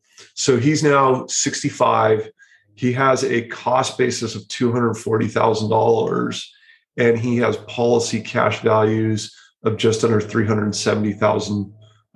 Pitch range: 110-130 Hz